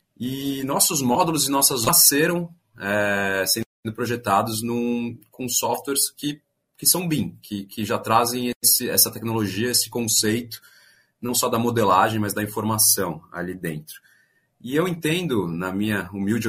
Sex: male